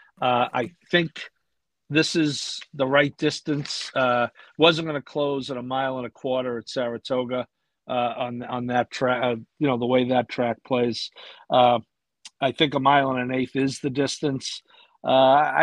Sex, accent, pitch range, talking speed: male, American, 135-175 Hz, 175 wpm